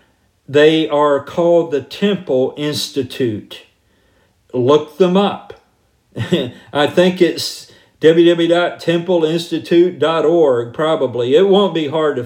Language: English